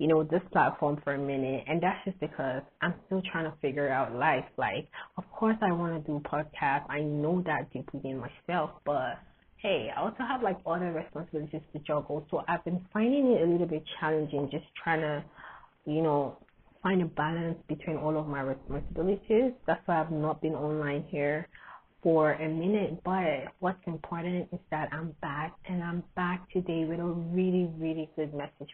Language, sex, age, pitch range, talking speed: English, female, 20-39, 150-195 Hz, 190 wpm